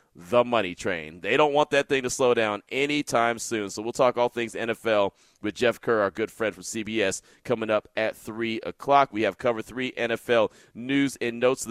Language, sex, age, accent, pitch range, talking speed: English, male, 30-49, American, 110-140 Hz, 210 wpm